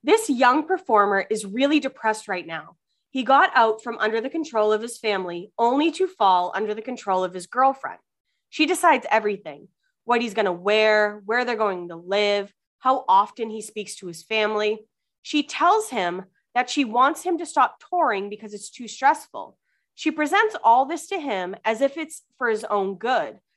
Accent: American